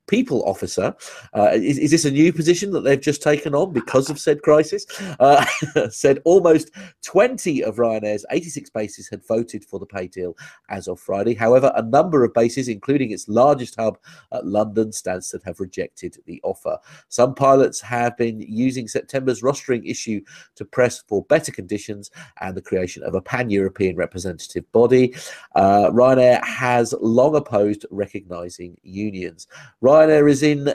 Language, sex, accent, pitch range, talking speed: English, male, British, 100-135 Hz, 165 wpm